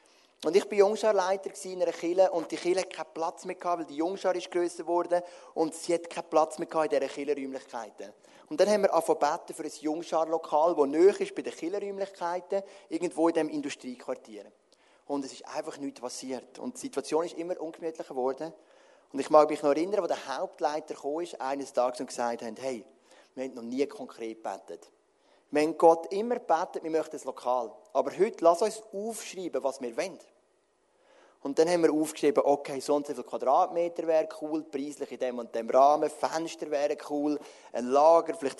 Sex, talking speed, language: male, 190 wpm, English